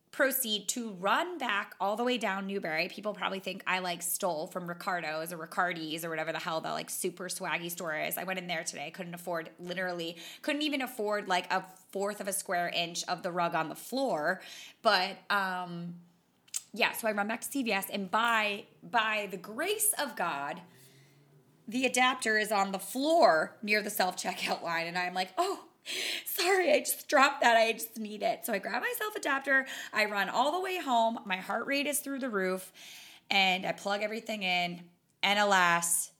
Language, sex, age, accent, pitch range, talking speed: English, female, 20-39, American, 175-245 Hz, 195 wpm